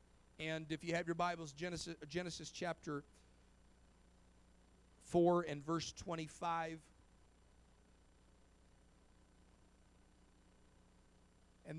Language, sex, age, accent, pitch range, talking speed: English, male, 40-59, American, 140-180 Hz, 70 wpm